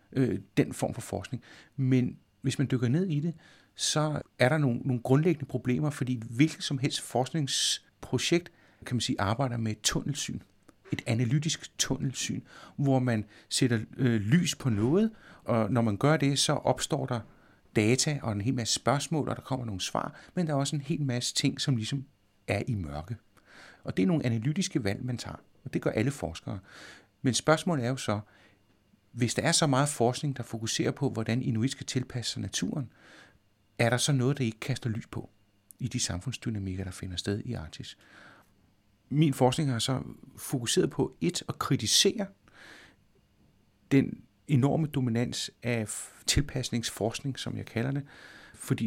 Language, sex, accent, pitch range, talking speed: Danish, male, native, 110-140 Hz, 170 wpm